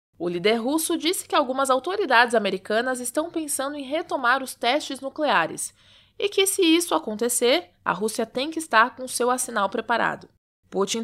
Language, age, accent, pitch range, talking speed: English, 20-39, Brazilian, 230-290 Hz, 165 wpm